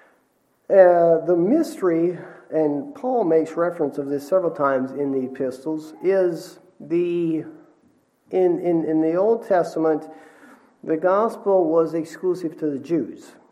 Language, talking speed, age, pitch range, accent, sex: English, 130 wpm, 50-69, 135-175 Hz, American, male